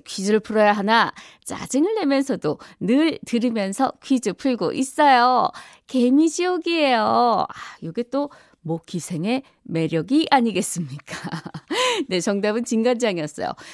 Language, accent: Korean, native